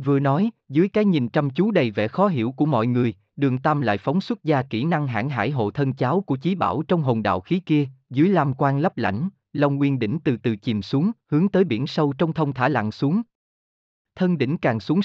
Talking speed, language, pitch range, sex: 240 wpm, Vietnamese, 120-165 Hz, male